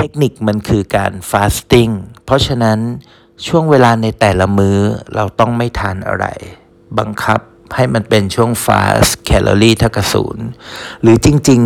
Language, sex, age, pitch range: Thai, male, 60-79, 100-115 Hz